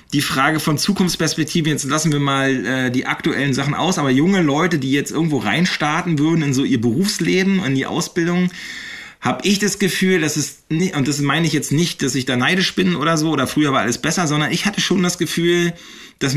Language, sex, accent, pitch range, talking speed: German, male, German, 130-165 Hz, 220 wpm